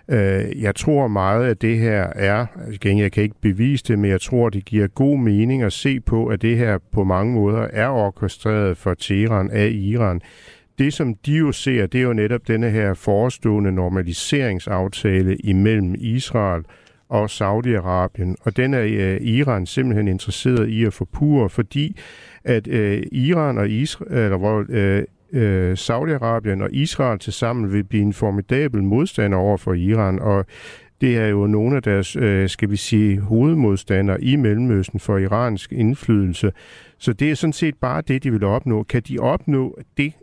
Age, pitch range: 50-69, 100-125 Hz